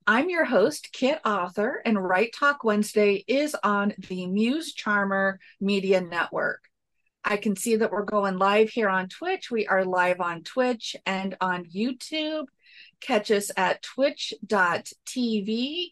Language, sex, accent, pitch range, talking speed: English, female, American, 190-240 Hz, 145 wpm